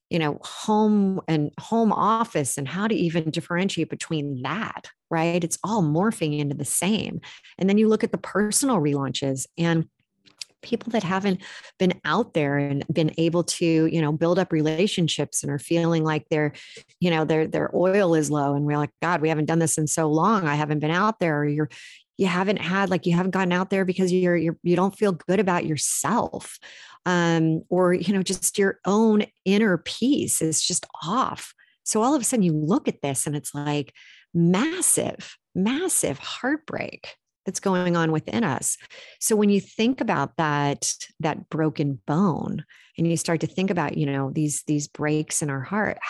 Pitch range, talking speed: 155-200 Hz, 190 wpm